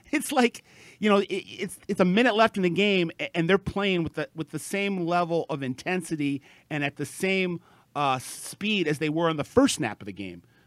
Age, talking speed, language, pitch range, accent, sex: 40-59, 220 wpm, English, 115-155 Hz, American, male